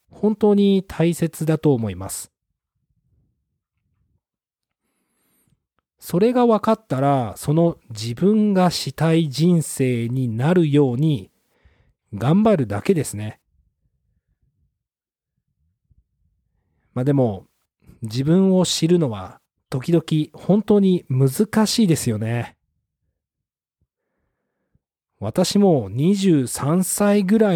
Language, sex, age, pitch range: Japanese, male, 40-59, 120-175 Hz